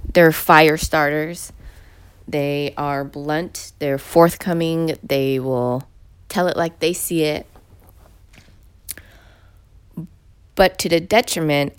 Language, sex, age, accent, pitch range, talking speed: English, female, 20-39, American, 95-150 Hz, 100 wpm